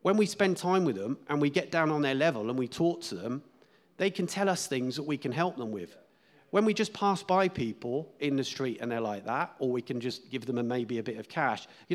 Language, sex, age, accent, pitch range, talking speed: English, male, 40-59, British, 130-180 Hz, 275 wpm